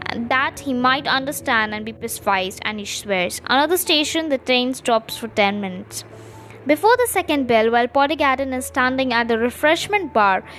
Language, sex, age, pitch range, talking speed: English, female, 20-39, 235-325 Hz, 170 wpm